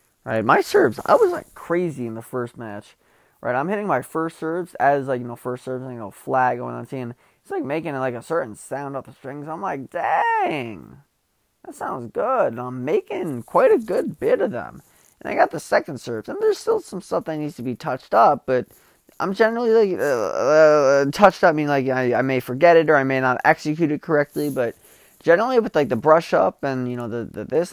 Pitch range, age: 130-205 Hz, 20-39